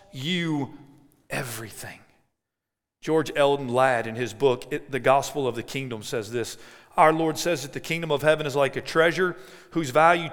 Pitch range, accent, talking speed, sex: 120-165 Hz, American, 170 wpm, male